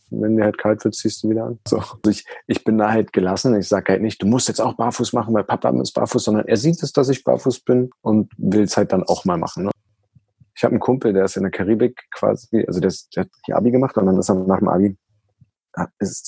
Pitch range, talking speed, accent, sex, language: 95-120 Hz, 270 wpm, German, male, German